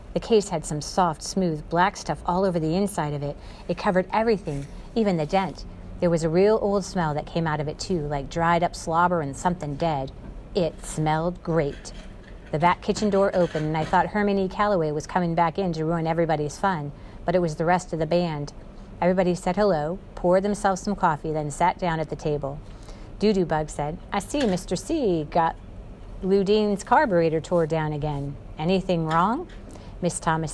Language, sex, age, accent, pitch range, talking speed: English, female, 40-59, American, 150-190 Hz, 195 wpm